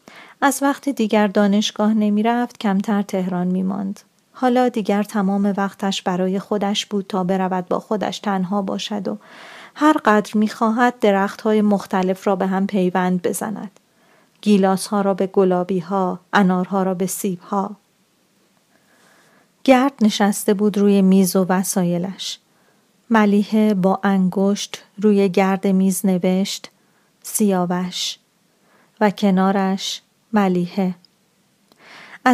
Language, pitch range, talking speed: Persian, 195-215 Hz, 120 wpm